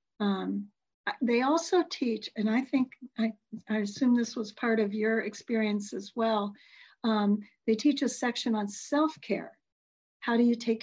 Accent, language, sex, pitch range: American, English, female, 205-235 Hz